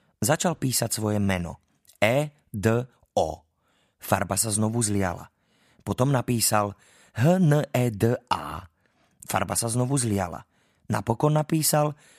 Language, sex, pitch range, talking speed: Slovak, male, 105-130 Hz, 120 wpm